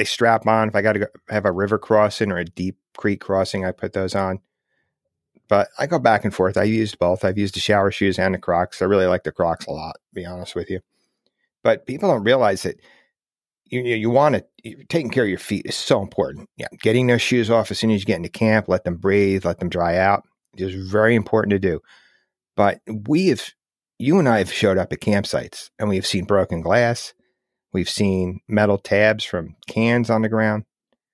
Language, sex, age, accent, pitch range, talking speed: English, male, 40-59, American, 95-115 Hz, 225 wpm